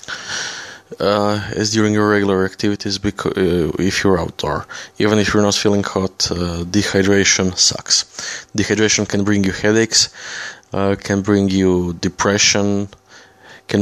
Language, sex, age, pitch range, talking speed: English, male, 20-39, 95-105 Hz, 135 wpm